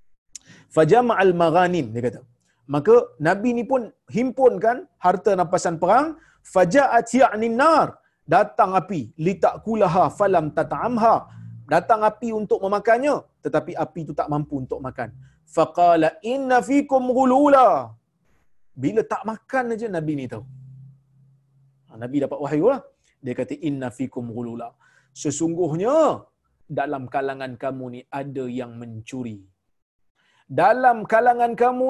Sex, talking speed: male, 115 wpm